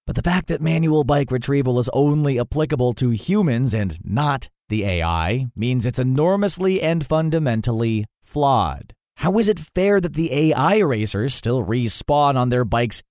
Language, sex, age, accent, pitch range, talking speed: English, male, 30-49, American, 120-155 Hz, 160 wpm